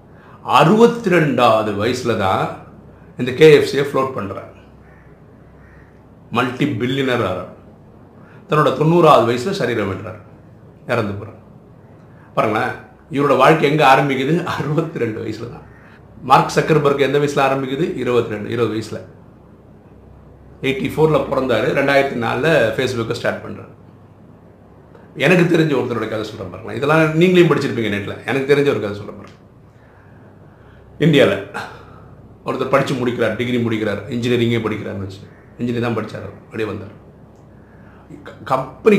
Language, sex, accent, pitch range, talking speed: Tamil, male, native, 110-145 Hz, 110 wpm